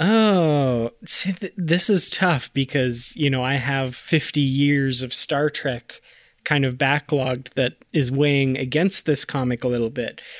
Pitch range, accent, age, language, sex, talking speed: 130-165 Hz, American, 20-39, English, male, 160 wpm